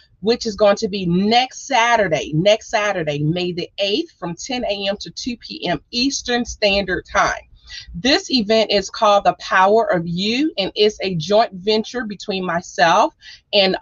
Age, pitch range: 30-49, 195-255 Hz